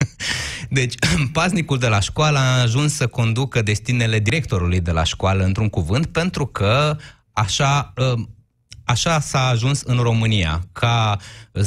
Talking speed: 130 wpm